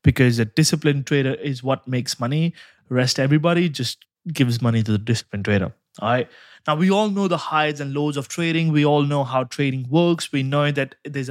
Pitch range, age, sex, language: 125-155 Hz, 20-39, male, English